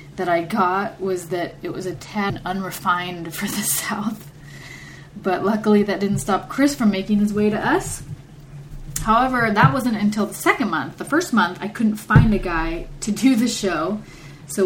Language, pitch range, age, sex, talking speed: English, 170-210 Hz, 20-39, female, 185 wpm